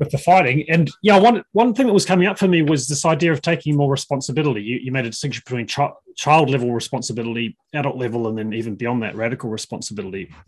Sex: male